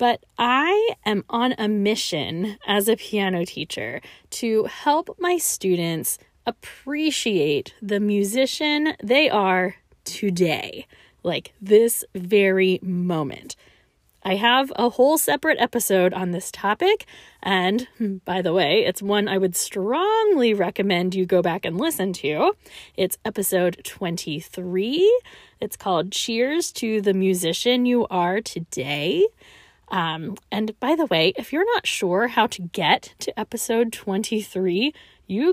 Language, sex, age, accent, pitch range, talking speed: English, female, 20-39, American, 190-260 Hz, 130 wpm